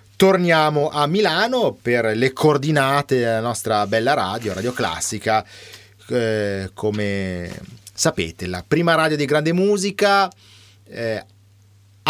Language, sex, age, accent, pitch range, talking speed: Italian, male, 30-49, native, 110-150 Hz, 110 wpm